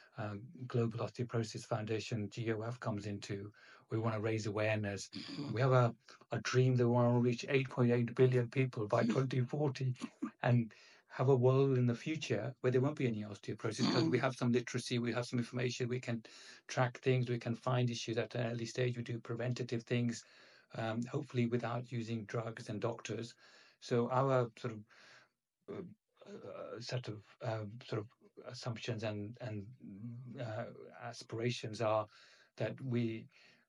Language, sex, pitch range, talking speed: English, male, 115-125 Hz, 160 wpm